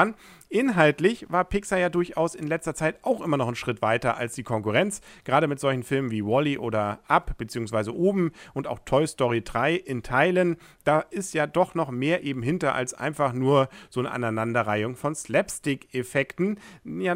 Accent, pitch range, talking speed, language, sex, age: German, 115-165 Hz, 180 wpm, German, male, 40-59